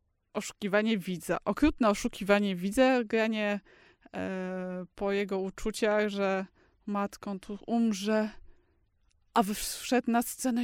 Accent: native